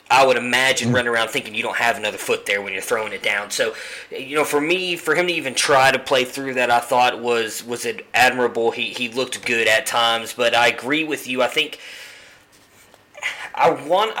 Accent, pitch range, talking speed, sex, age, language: American, 120-135 Hz, 215 wpm, male, 20-39, English